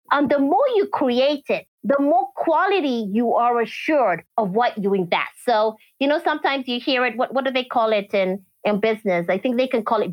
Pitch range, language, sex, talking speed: 200-255 Hz, English, female, 225 wpm